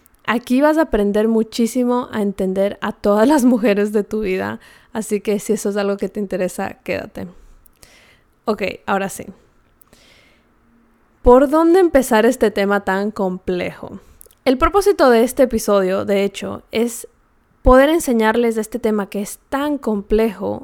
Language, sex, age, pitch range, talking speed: Spanish, female, 20-39, 200-245 Hz, 150 wpm